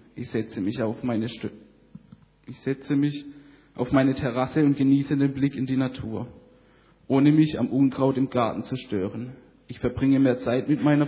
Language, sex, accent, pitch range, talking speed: German, male, German, 125-140 Hz, 180 wpm